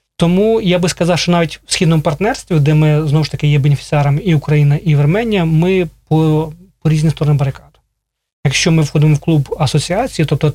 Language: Russian